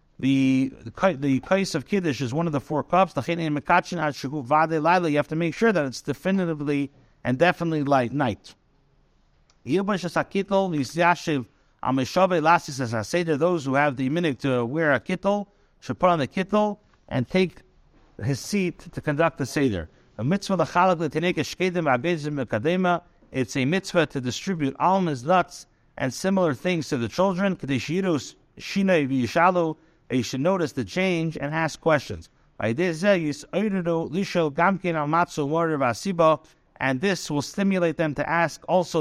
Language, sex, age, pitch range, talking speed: English, male, 60-79, 140-180 Hz, 120 wpm